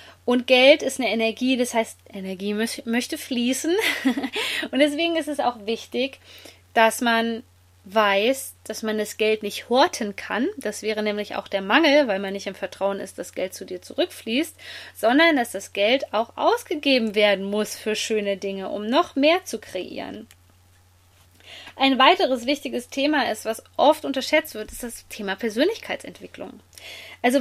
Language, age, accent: German, 20-39, German